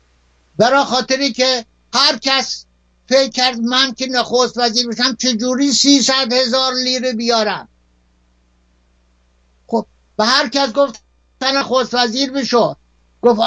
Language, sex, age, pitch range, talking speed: Persian, male, 60-79, 185-255 Hz, 100 wpm